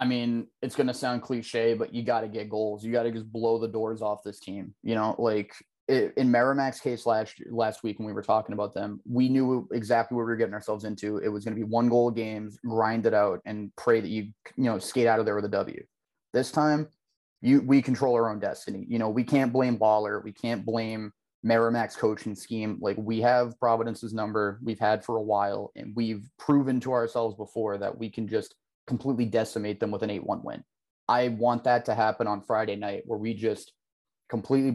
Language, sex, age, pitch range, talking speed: English, male, 20-39, 110-120 Hz, 230 wpm